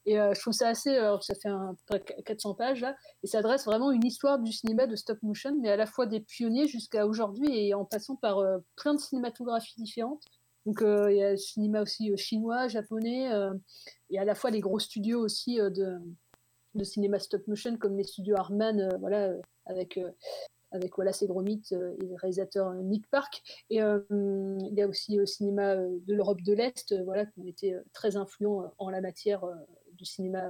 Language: French